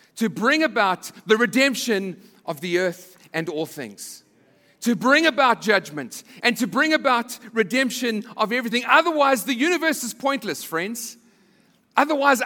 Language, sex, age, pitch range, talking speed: English, male, 40-59, 195-270 Hz, 140 wpm